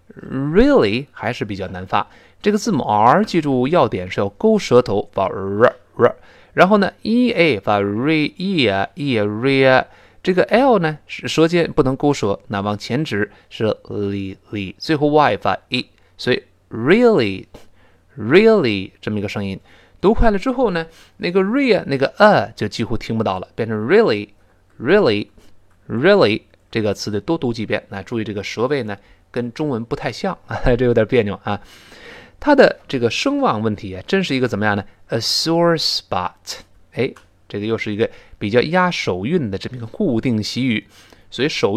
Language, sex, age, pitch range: Chinese, male, 20-39, 100-165 Hz